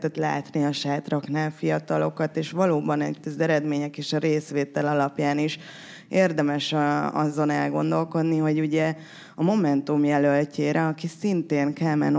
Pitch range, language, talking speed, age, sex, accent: 140-155 Hz, English, 120 wpm, 20-39, female, Finnish